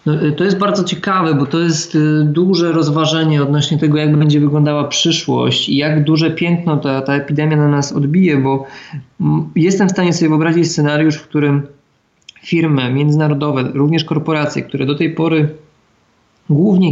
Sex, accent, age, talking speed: male, native, 20-39, 155 wpm